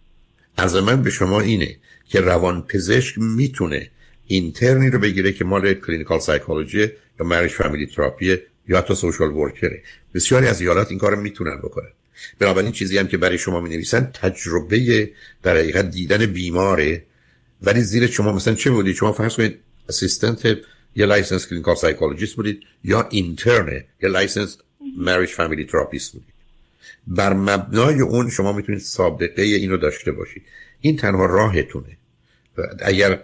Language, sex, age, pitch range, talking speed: Persian, male, 60-79, 90-110 Hz, 140 wpm